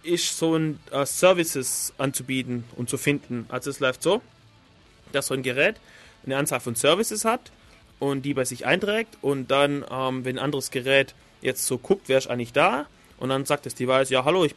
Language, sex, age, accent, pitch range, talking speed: German, male, 30-49, German, 125-160 Hz, 200 wpm